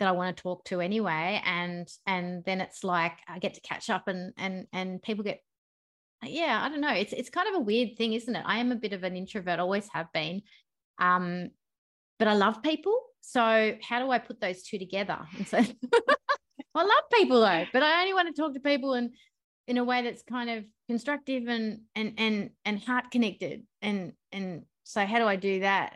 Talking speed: 215 wpm